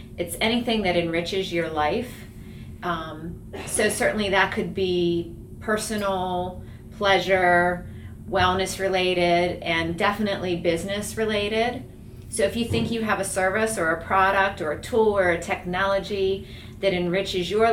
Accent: American